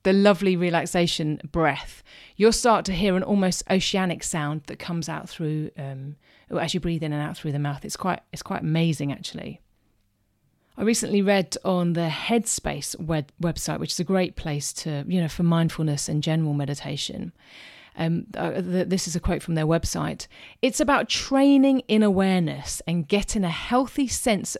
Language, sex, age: English, female, 30-49